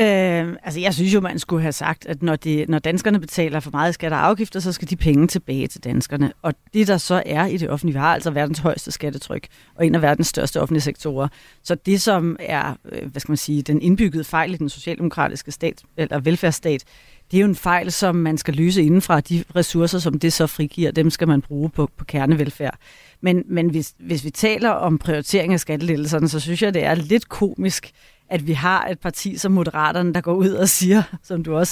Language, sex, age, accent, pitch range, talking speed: Danish, female, 30-49, native, 160-200 Hz, 225 wpm